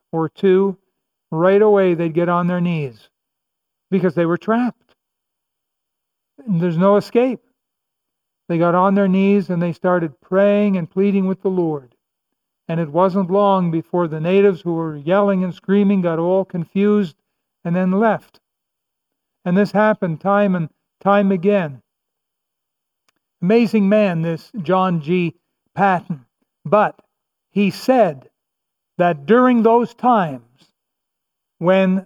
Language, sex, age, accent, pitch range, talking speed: English, male, 60-79, American, 175-205 Hz, 130 wpm